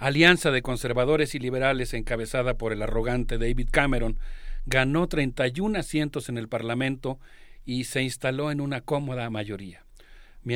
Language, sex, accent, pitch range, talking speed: Spanish, male, Mexican, 115-145 Hz, 140 wpm